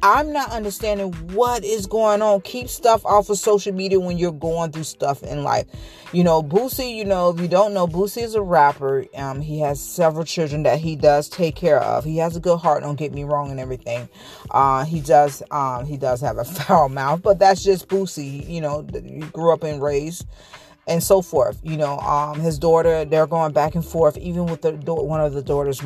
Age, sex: 40-59, female